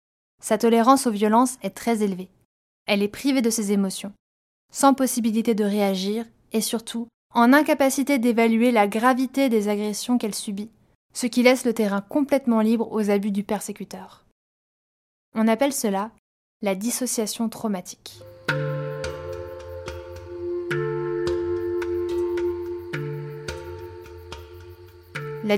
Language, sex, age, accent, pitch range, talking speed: French, female, 20-39, French, 195-245 Hz, 110 wpm